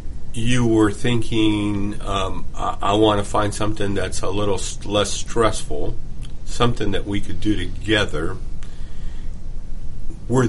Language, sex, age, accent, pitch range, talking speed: English, male, 50-69, American, 90-120 Hz, 130 wpm